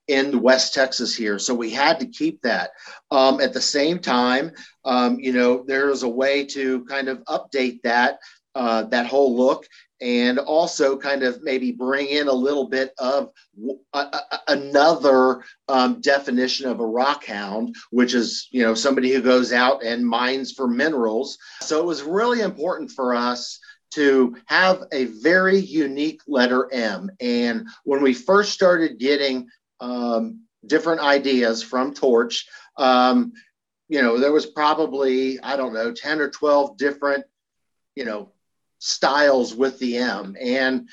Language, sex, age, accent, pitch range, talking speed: English, male, 40-59, American, 125-155 Hz, 160 wpm